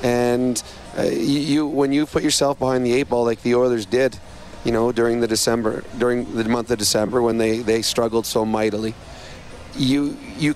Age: 30-49